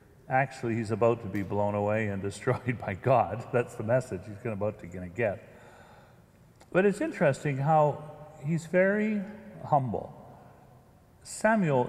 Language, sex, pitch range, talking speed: English, male, 115-150 Hz, 130 wpm